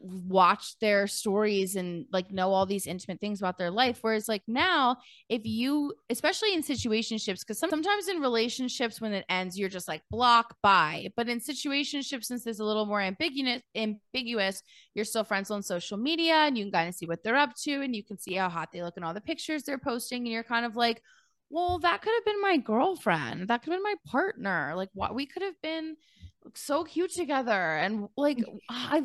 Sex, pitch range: female, 210-295 Hz